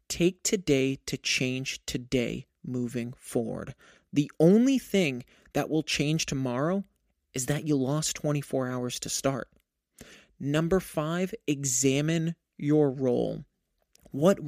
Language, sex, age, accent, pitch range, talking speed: English, male, 30-49, American, 130-170 Hz, 115 wpm